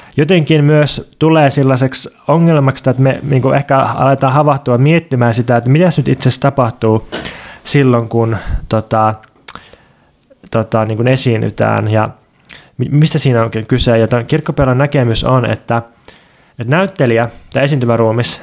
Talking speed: 125 wpm